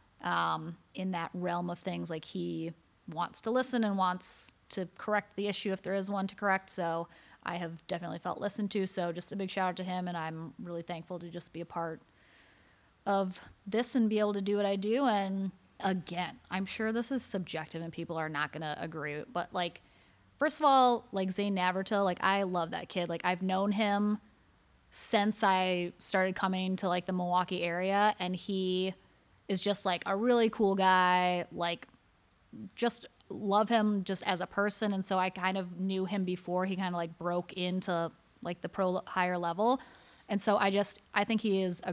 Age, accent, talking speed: 20-39, American, 200 wpm